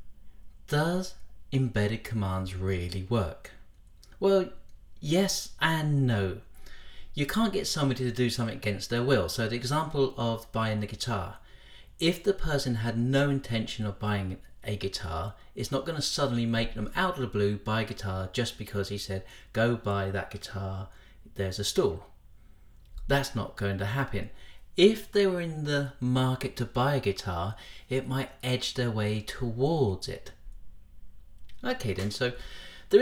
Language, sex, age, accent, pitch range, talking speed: English, male, 40-59, British, 100-135 Hz, 155 wpm